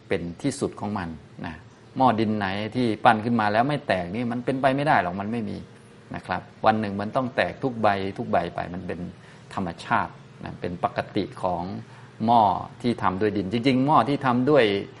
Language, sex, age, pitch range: Thai, male, 20-39, 100-120 Hz